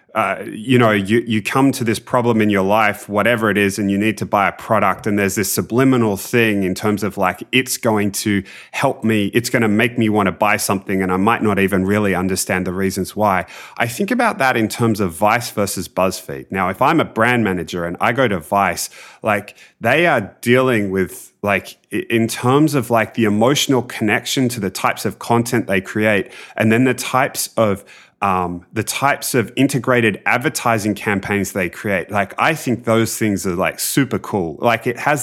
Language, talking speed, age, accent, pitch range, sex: English, 205 wpm, 30-49, Australian, 100-120 Hz, male